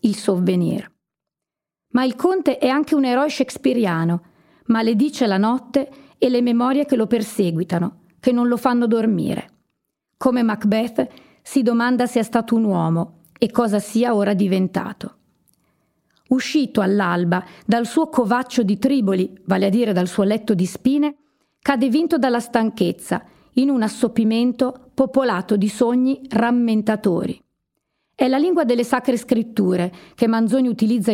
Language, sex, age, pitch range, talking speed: Italian, female, 40-59, 210-255 Hz, 140 wpm